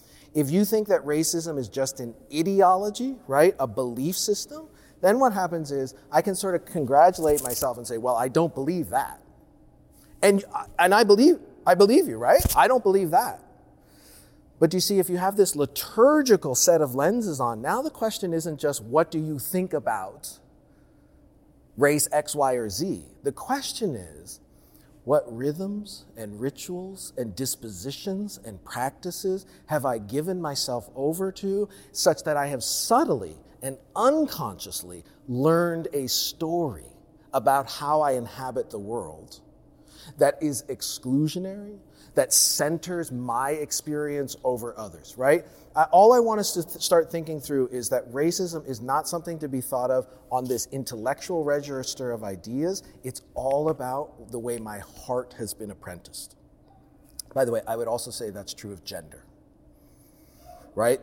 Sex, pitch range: male, 125-175 Hz